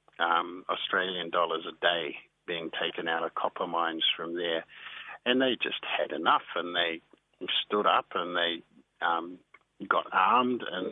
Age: 50-69